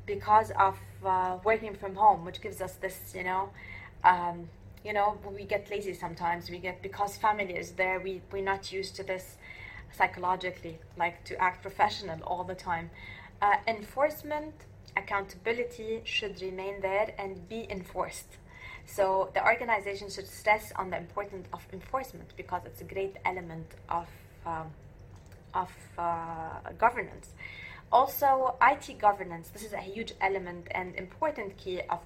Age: 20-39